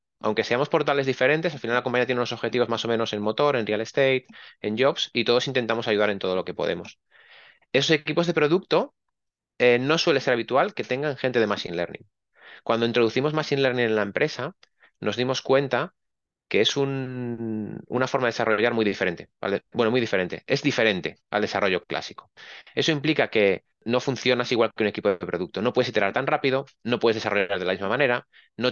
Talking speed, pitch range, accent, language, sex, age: 200 wpm, 110-135 Hz, Spanish, Spanish, male, 30-49